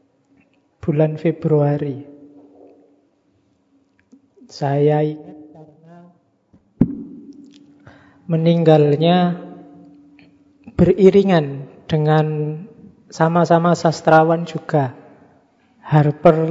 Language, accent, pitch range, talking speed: Indonesian, native, 150-170 Hz, 35 wpm